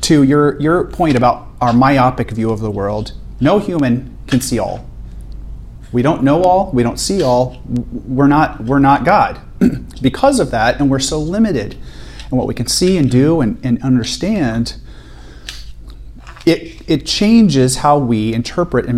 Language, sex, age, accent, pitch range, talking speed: English, male, 30-49, American, 120-170 Hz, 170 wpm